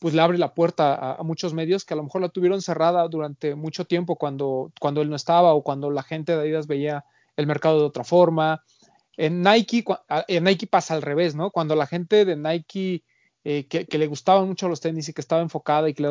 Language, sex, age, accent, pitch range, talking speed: Spanish, male, 30-49, Mexican, 150-180 Hz, 235 wpm